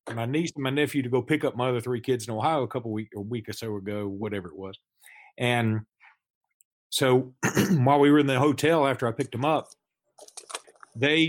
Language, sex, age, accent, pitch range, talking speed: English, male, 40-59, American, 115-145 Hz, 220 wpm